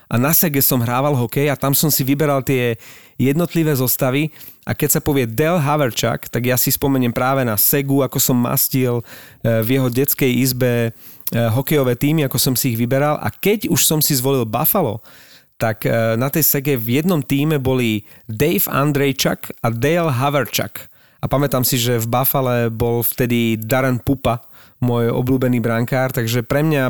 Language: Slovak